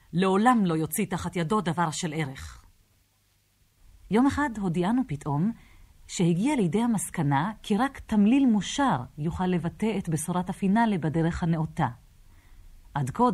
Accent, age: native, 40-59